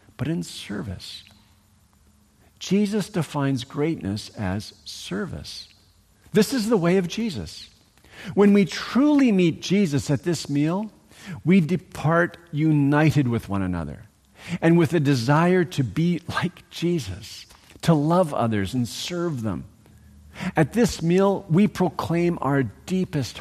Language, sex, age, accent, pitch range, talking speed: English, male, 50-69, American, 105-175 Hz, 125 wpm